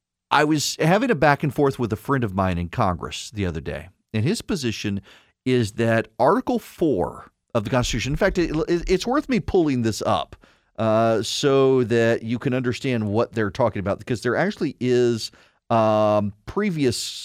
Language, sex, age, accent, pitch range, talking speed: English, male, 40-59, American, 110-150 Hz, 175 wpm